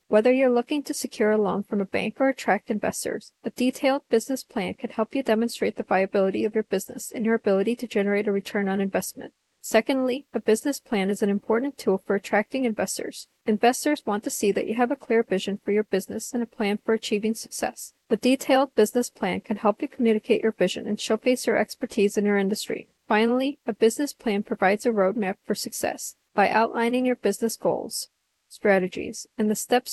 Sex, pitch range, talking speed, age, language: female, 210-245 Hz, 200 wpm, 40-59, English